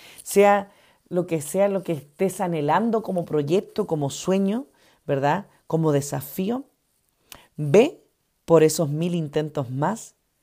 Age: 40-59